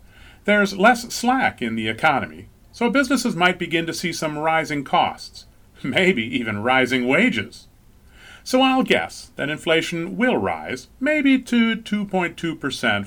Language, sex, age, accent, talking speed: English, male, 40-59, American, 135 wpm